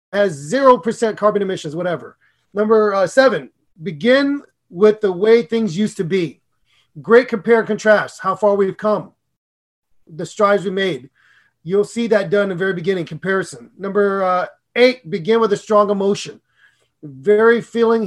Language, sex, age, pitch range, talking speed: English, male, 30-49, 190-230 Hz, 160 wpm